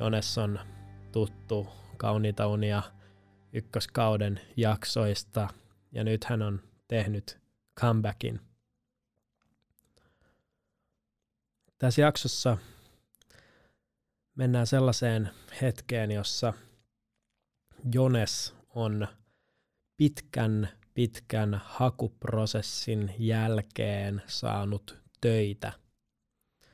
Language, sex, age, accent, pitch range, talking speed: Finnish, male, 20-39, native, 105-120 Hz, 60 wpm